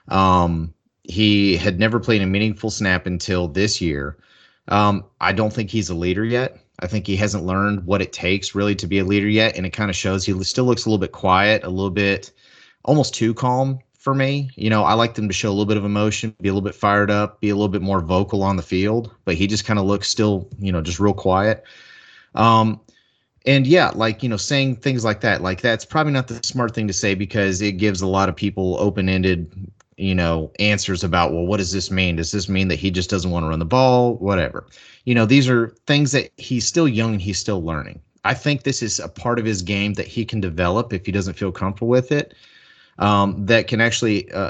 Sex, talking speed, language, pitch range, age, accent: male, 240 wpm, English, 95-115 Hz, 30-49, American